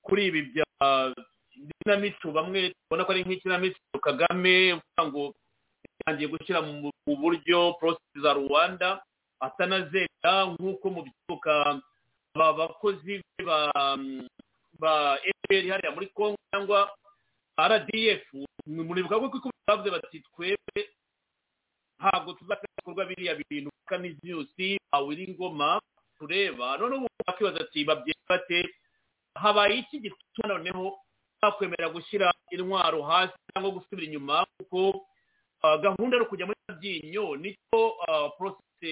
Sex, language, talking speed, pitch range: male, English, 90 wpm, 155-205 Hz